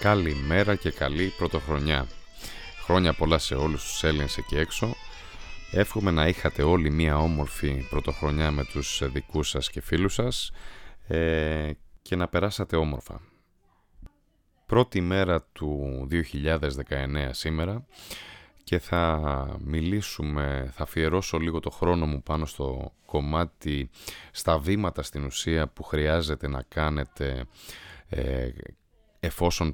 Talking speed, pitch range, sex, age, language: 115 wpm, 75-90 Hz, male, 30-49, Greek